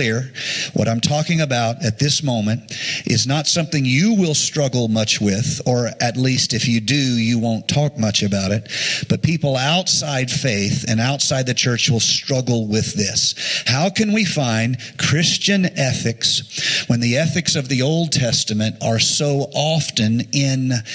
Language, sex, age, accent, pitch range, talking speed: English, male, 50-69, American, 120-150 Hz, 160 wpm